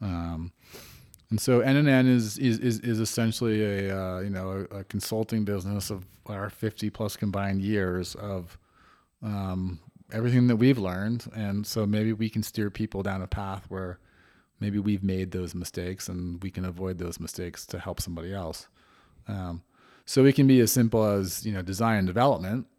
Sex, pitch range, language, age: male, 90-110 Hz, English, 30-49